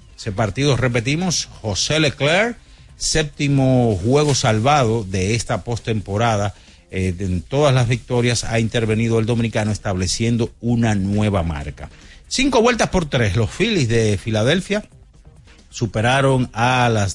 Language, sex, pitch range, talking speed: Spanish, male, 105-135 Hz, 125 wpm